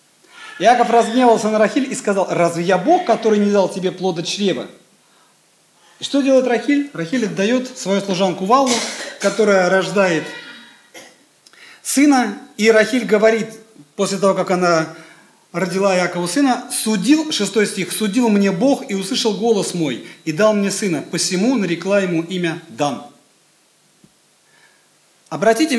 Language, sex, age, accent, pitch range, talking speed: Russian, male, 40-59, native, 180-245 Hz, 135 wpm